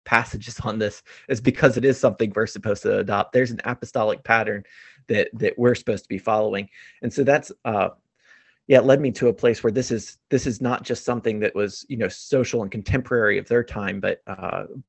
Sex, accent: male, American